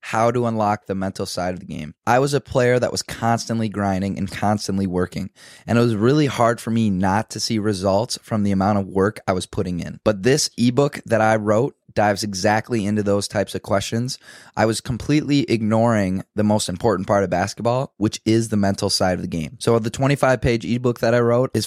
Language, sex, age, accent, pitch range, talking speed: English, male, 20-39, American, 100-120 Hz, 220 wpm